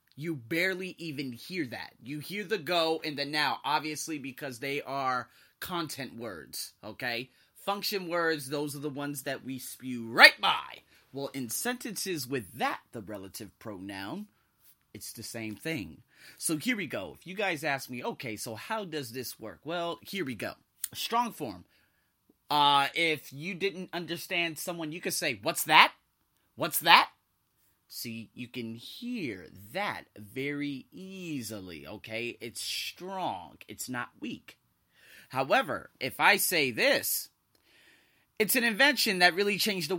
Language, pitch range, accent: English, 120-175 Hz, American